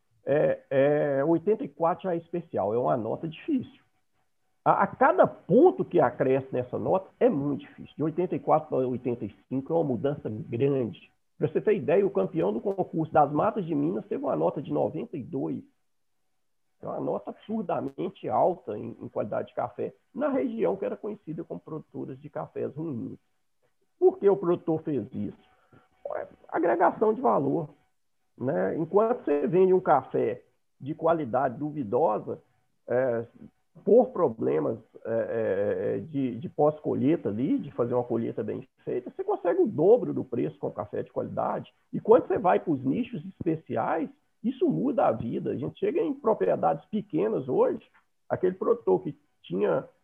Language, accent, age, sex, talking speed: Portuguese, Brazilian, 50-69, male, 155 wpm